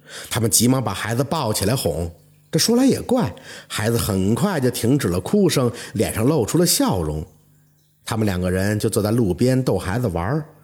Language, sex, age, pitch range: Chinese, male, 50-69, 105-155 Hz